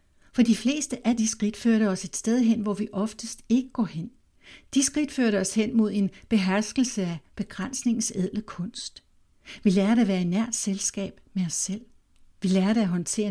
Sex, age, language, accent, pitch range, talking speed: female, 60-79, Danish, native, 185-225 Hz, 185 wpm